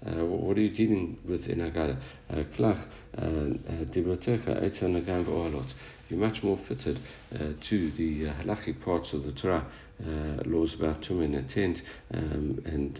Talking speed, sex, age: 150 wpm, male, 60-79